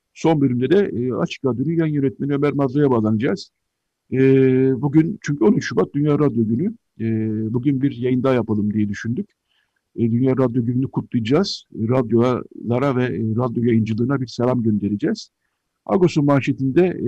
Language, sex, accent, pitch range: Turkish, male, native, 115-135 Hz